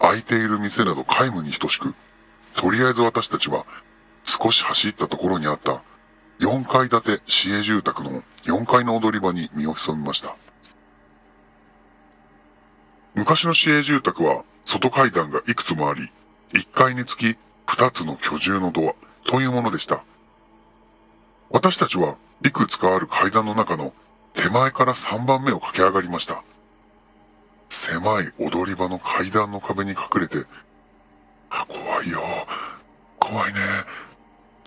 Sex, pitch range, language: female, 85-115 Hz, Japanese